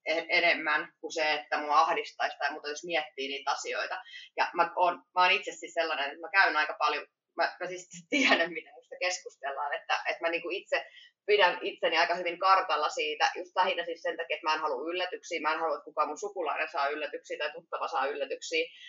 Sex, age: female, 20-39